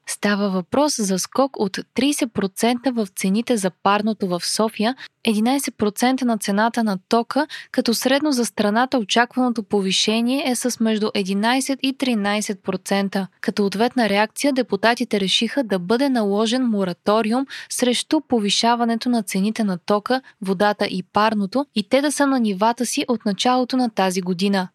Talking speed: 145 wpm